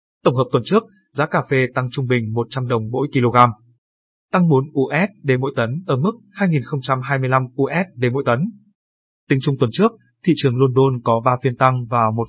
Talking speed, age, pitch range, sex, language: 185 wpm, 20-39, 125-145 Hz, male, Vietnamese